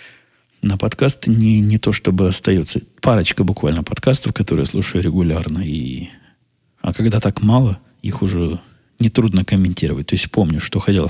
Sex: male